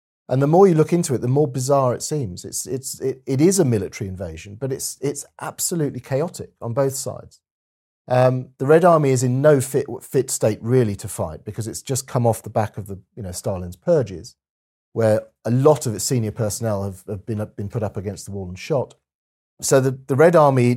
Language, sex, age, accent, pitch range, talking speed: English, male, 40-59, British, 100-135 Hz, 225 wpm